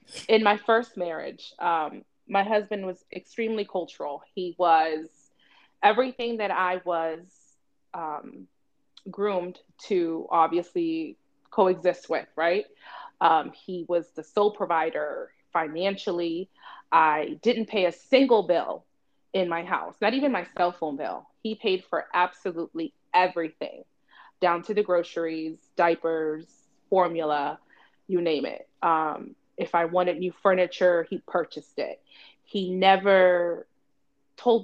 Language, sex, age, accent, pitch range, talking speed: English, female, 20-39, American, 170-200 Hz, 125 wpm